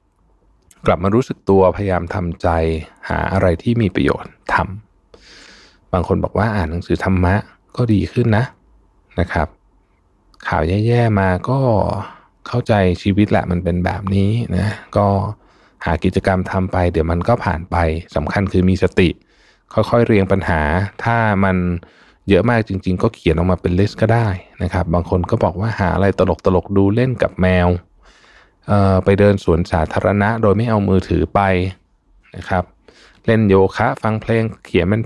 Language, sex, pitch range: Thai, male, 90-105 Hz